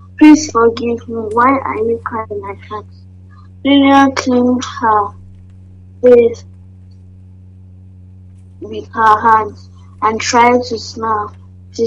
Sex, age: female, 20-39